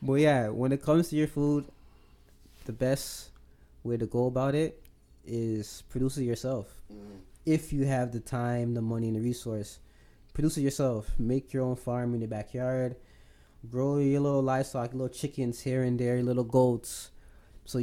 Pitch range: 110-130 Hz